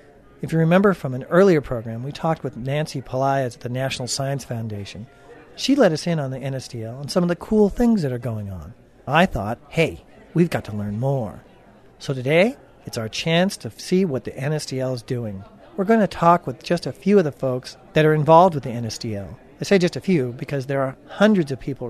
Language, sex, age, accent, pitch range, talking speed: English, male, 50-69, American, 130-175 Hz, 225 wpm